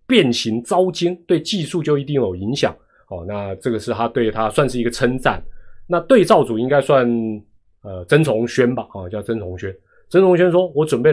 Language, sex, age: Chinese, male, 30-49